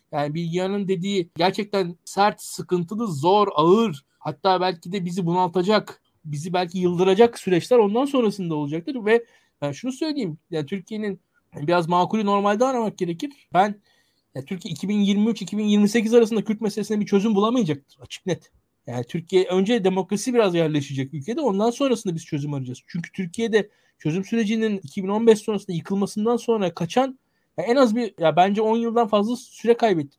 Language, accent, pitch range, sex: Turkish, native, 175-225 Hz, male